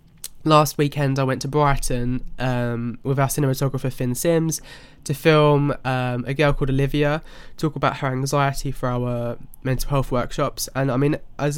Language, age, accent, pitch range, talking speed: English, 20-39, British, 130-155 Hz, 165 wpm